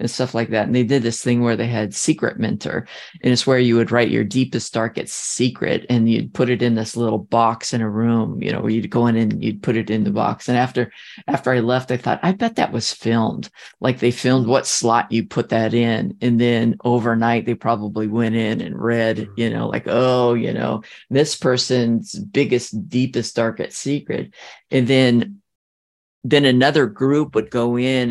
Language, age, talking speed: English, 50-69, 210 wpm